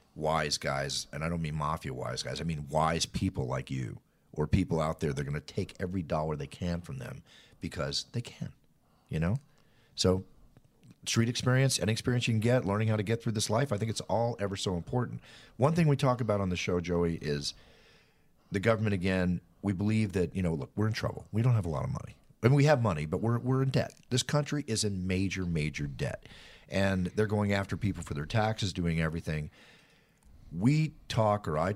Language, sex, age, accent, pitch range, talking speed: English, male, 40-59, American, 85-115 Hz, 220 wpm